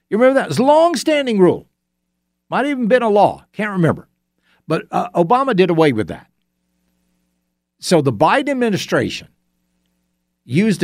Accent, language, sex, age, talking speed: American, English, male, 50-69, 155 wpm